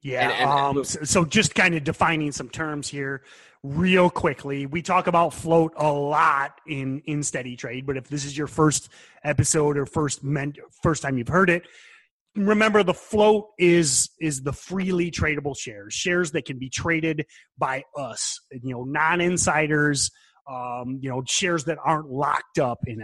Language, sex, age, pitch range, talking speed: English, male, 30-49, 135-170 Hz, 170 wpm